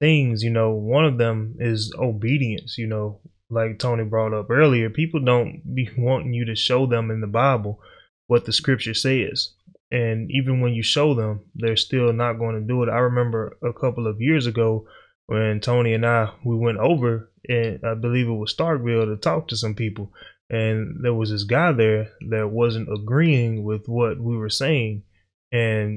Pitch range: 110-130 Hz